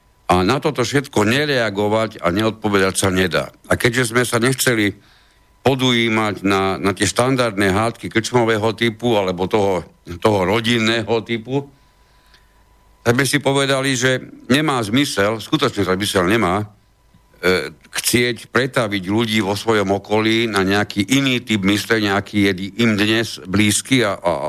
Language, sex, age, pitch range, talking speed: Slovak, male, 60-79, 95-115 Hz, 135 wpm